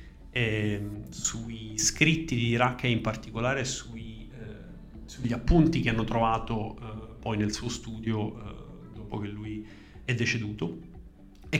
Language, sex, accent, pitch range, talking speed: Italian, male, native, 110-130 Hz, 140 wpm